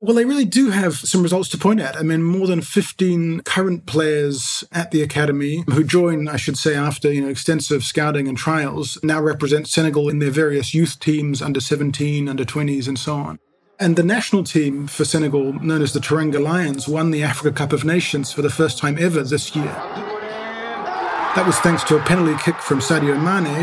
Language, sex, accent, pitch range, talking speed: English, male, Australian, 145-170 Hz, 200 wpm